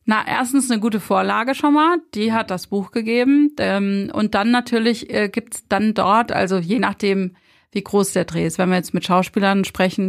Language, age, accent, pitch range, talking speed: German, 30-49, German, 185-230 Hz, 195 wpm